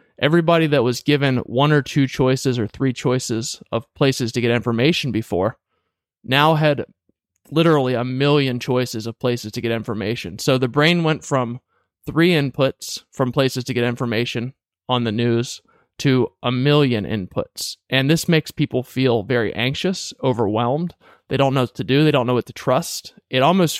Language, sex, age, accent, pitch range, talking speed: English, male, 20-39, American, 120-145 Hz, 175 wpm